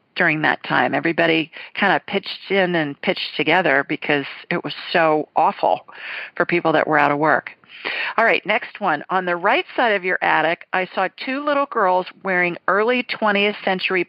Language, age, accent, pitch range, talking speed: English, 40-59, American, 170-215 Hz, 185 wpm